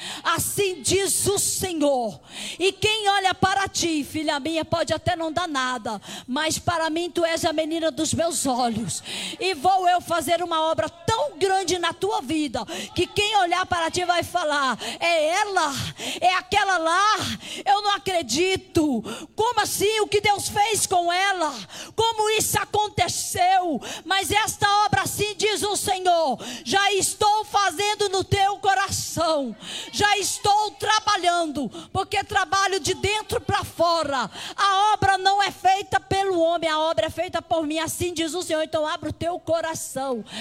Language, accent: Portuguese, Brazilian